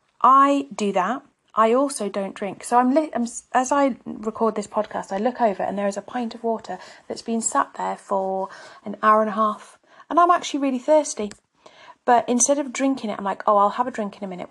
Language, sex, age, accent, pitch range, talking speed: English, female, 30-49, British, 195-265 Hz, 230 wpm